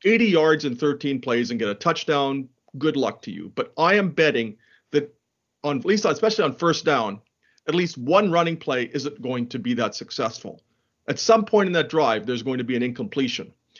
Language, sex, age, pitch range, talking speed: English, male, 40-59, 130-160 Hz, 210 wpm